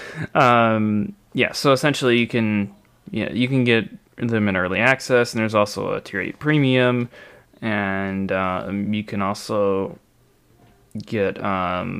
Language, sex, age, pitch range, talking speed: English, male, 20-39, 105-135 Hz, 140 wpm